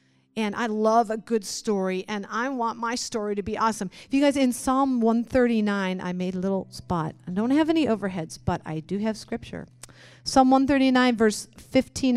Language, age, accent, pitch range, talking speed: English, 40-59, American, 185-235 Hz, 190 wpm